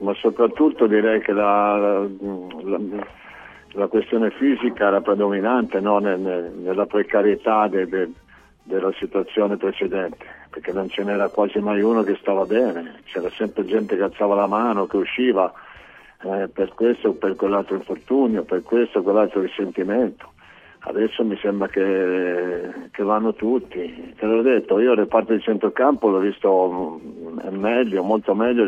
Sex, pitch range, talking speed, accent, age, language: male, 95-110 Hz, 145 wpm, native, 50-69, Italian